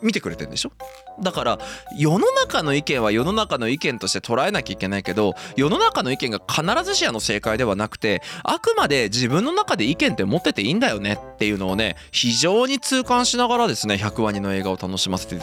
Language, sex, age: Japanese, male, 20-39